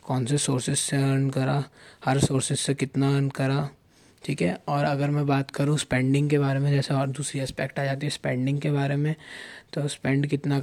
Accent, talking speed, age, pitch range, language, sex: native, 210 wpm, 20-39, 135-145 Hz, Hindi, male